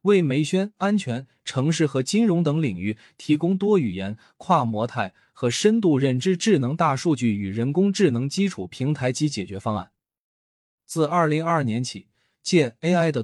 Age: 20-39